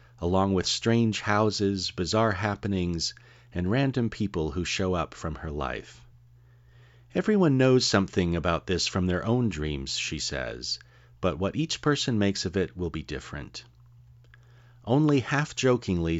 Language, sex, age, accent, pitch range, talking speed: English, male, 40-59, American, 85-120 Hz, 140 wpm